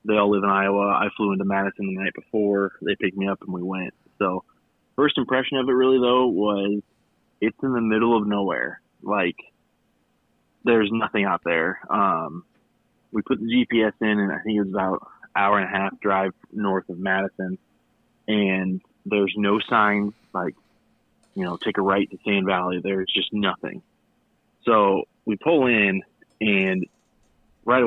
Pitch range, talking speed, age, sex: 95-110 Hz, 170 wpm, 20-39, male